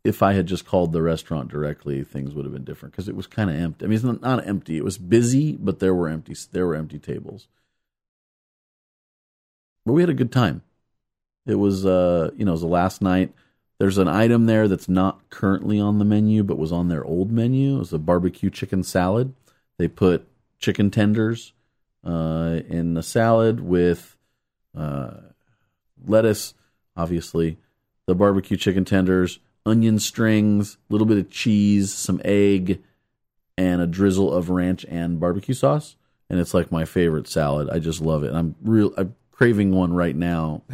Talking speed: 185 wpm